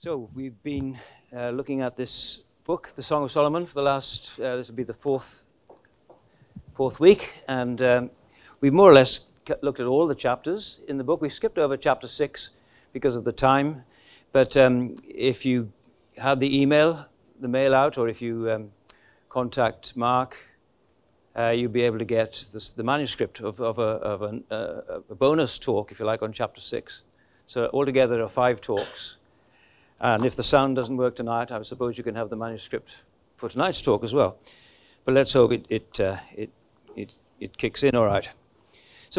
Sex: male